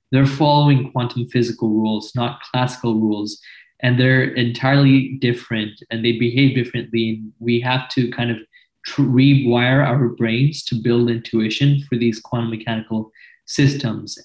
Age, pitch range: 20-39, 115-135 Hz